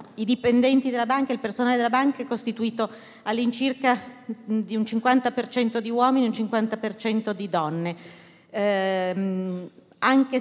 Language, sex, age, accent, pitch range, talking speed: Italian, female, 40-59, native, 185-225 Hz, 135 wpm